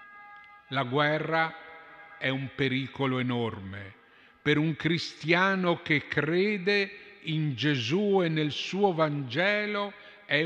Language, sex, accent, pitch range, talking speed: Italian, male, native, 135-180 Hz, 105 wpm